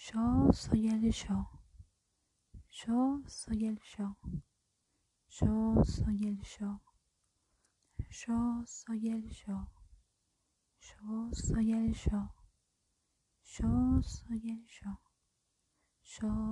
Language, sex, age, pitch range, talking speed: Spanish, female, 20-39, 190-225 Hz, 90 wpm